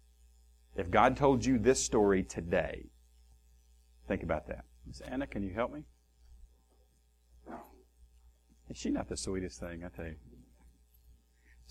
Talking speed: 125 wpm